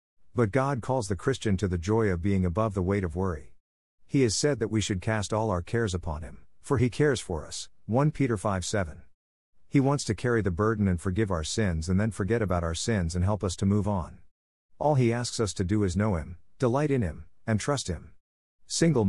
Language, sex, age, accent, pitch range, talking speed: English, male, 50-69, American, 90-115 Hz, 230 wpm